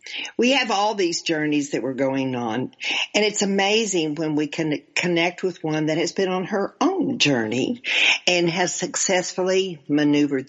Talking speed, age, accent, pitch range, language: 165 wpm, 60-79, American, 145-220 Hz, English